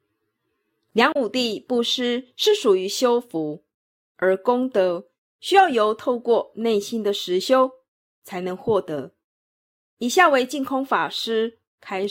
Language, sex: Chinese, female